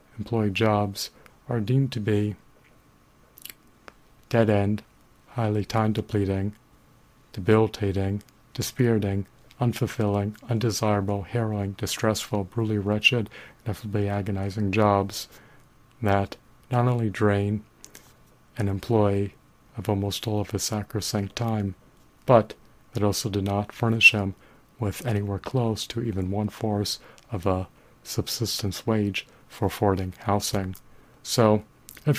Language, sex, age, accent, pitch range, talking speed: English, male, 40-59, American, 100-115 Hz, 105 wpm